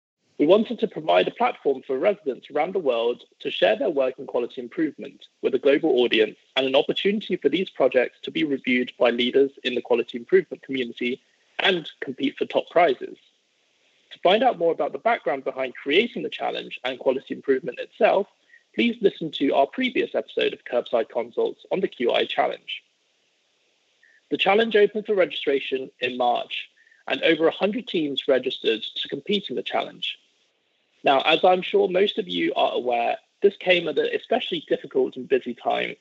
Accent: British